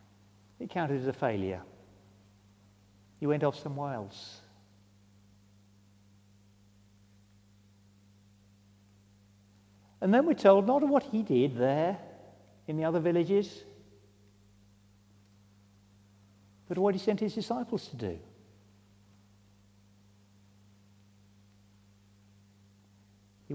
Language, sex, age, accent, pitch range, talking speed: English, male, 50-69, British, 100-165 Hz, 85 wpm